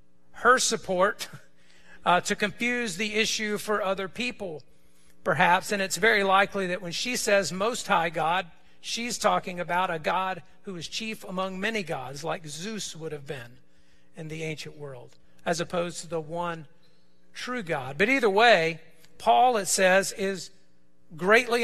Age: 50-69